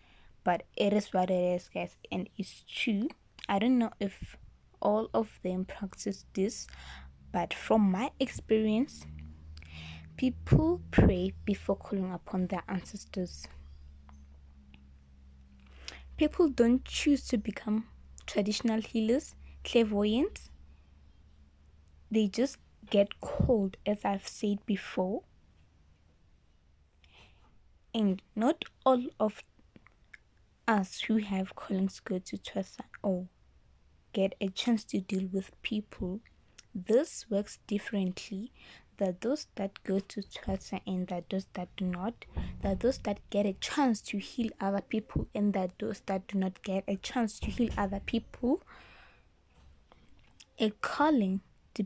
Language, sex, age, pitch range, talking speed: English, female, 20-39, 175-220 Hz, 125 wpm